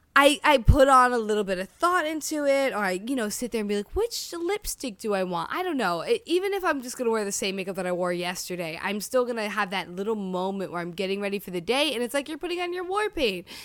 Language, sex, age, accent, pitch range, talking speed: English, female, 10-29, American, 195-290 Hz, 290 wpm